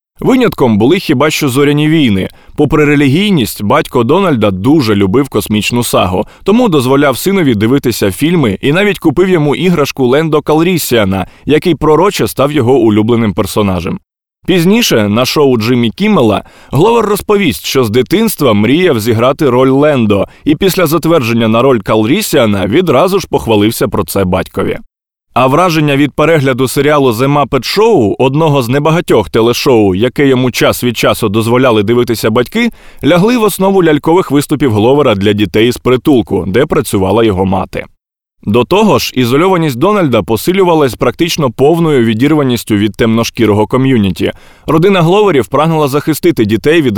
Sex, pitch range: male, 110-160 Hz